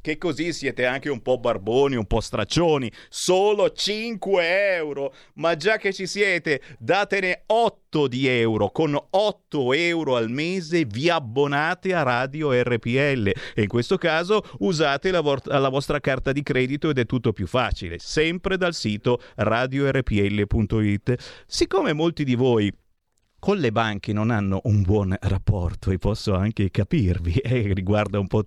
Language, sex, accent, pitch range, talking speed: Italian, male, native, 110-180 Hz, 155 wpm